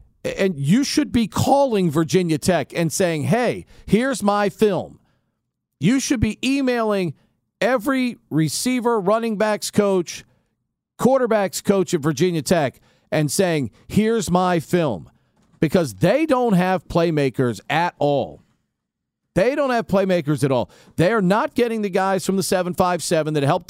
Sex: male